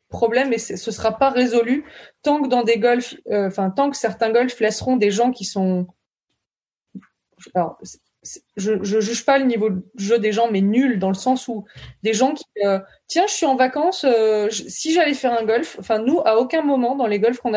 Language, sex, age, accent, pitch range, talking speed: French, female, 20-39, French, 215-270 Hz, 230 wpm